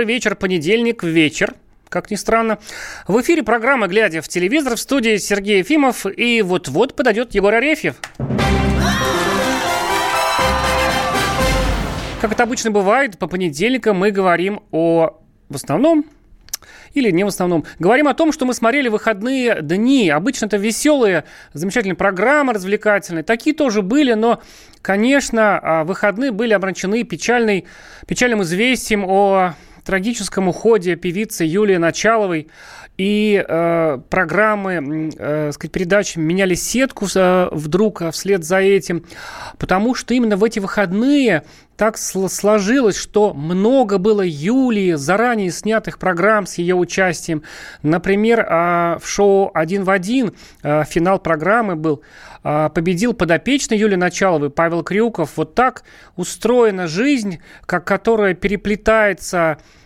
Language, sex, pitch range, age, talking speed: Russian, male, 175-225 Hz, 30-49, 125 wpm